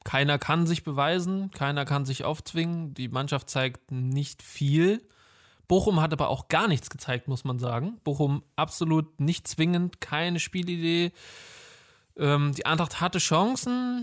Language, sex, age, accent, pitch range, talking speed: German, male, 20-39, German, 135-175 Hz, 145 wpm